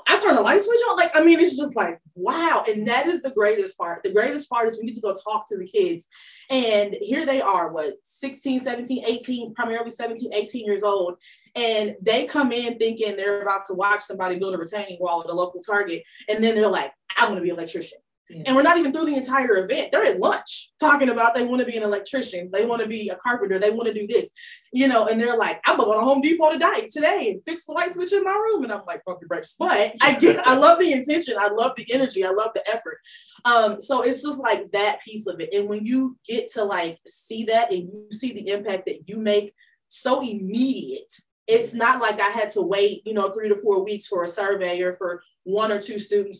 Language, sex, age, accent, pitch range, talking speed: English, female, 20-39, American, 195-265 Hz, 245 wpm